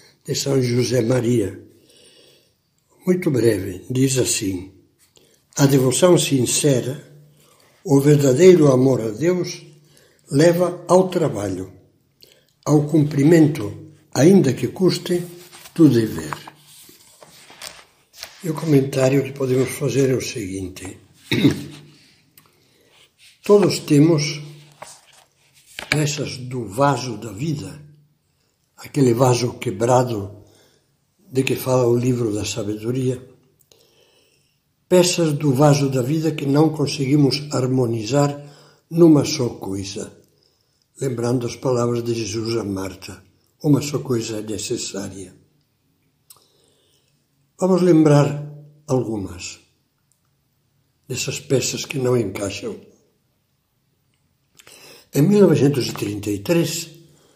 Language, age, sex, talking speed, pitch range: Portuguese, 60-79, male, 90 wpm, 120-150 Hz